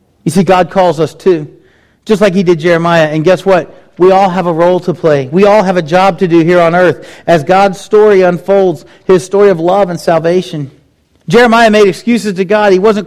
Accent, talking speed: American, 220 wpm